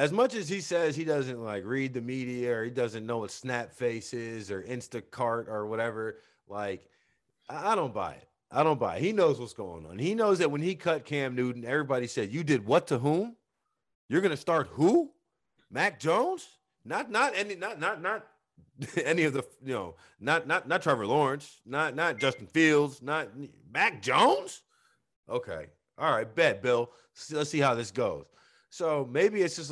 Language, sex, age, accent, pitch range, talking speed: English, male, 30-49, American, 120-150 Hz, 190 wpm